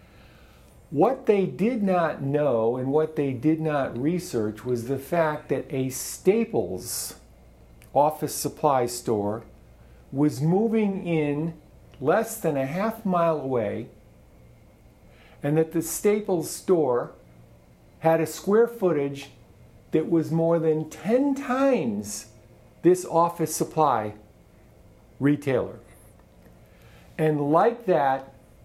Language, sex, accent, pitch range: English, male, American, 120-175 Hz